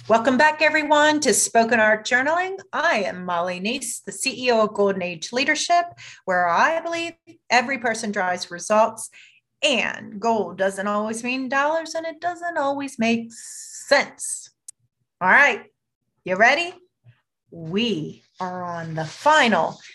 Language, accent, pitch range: English, American, 180-265 Hz